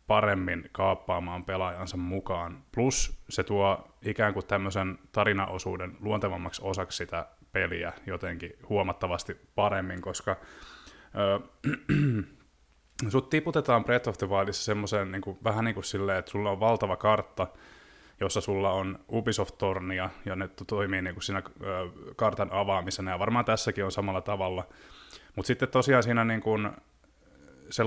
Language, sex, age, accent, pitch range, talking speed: Finnish, male, 20-39, native, 95-110 Hz, 140 wpm